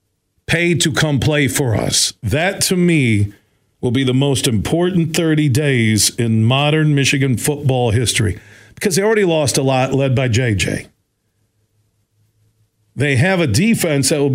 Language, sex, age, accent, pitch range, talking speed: English, male, 50-69, American, 115-160 Hz, 150 wpm